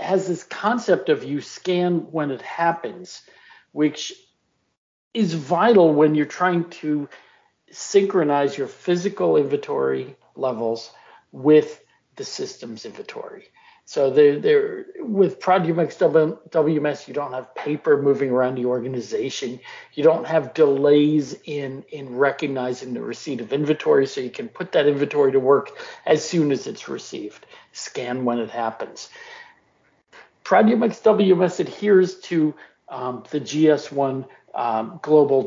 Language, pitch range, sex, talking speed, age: English, 135-180 Hz, male, 125 wpm, 50-69